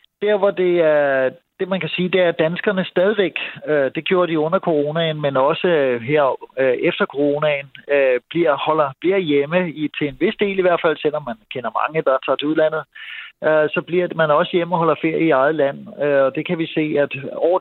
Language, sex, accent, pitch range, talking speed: English, male, Danish, 135-175 Hz, 230 wpm